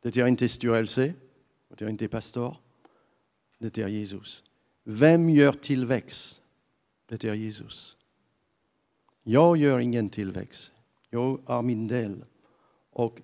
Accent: French